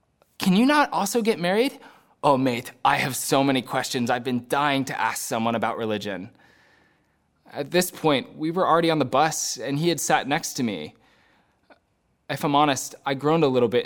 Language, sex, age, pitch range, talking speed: English, male, 20-39, 125-185 Hz, 195 wpm